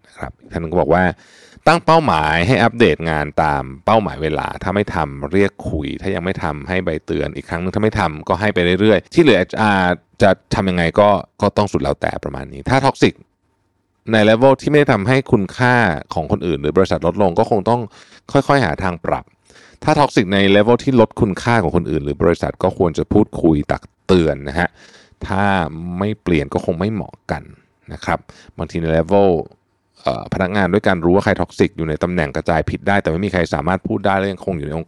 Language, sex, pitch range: Thai, male, 85-105 Hz